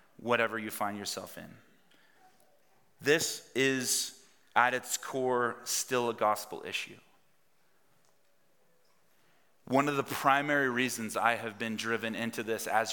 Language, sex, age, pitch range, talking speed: English, male, 30-49, 110-130 Hz, 120 wpm